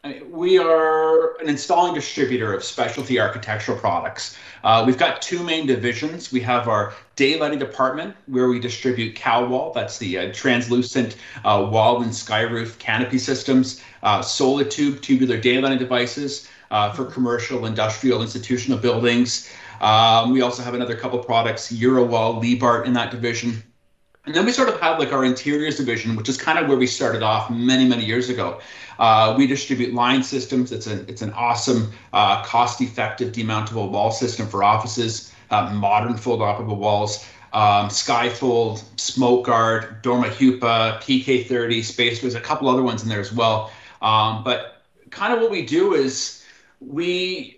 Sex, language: male, English